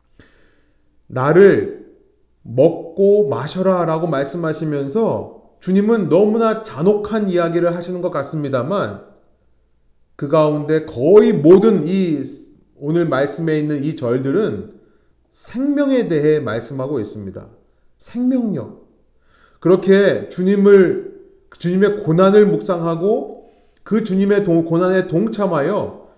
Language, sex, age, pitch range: Korean, male, 30-49, 135-200 Hz